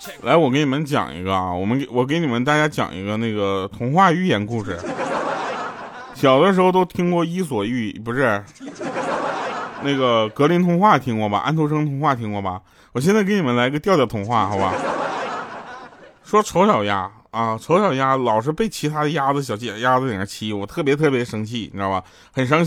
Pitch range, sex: 120-170 Hz, male